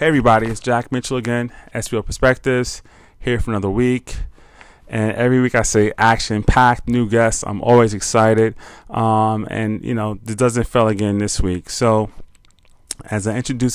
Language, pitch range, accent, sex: English, 110-125 Hz, American, male